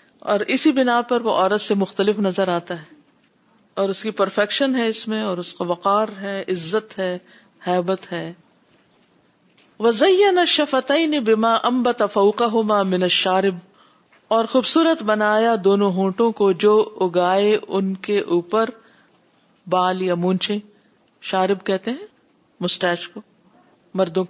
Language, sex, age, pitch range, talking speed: Urdu, female, 50-69, 190-245 Hz, 140 wpm